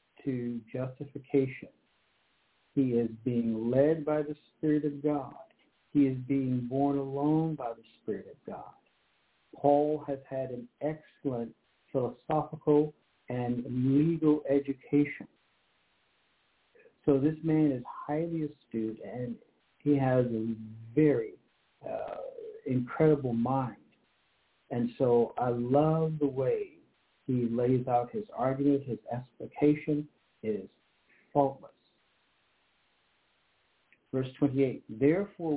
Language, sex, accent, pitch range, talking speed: English, male, American, 125-155 Hz, 105 wpm